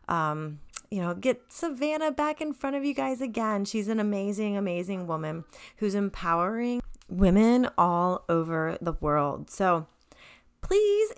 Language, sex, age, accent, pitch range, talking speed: English, female, 30-49, American, 175-225 Hz, 140 wpm